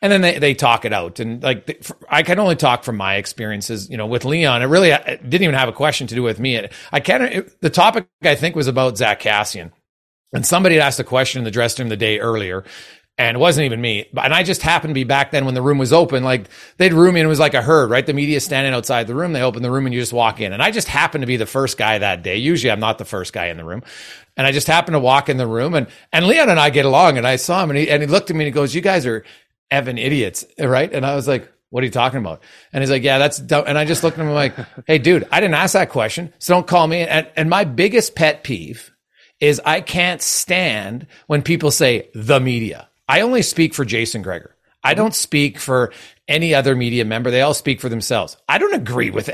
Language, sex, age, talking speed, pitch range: English, male, 40-59, 275 wpm, 120-160 Hz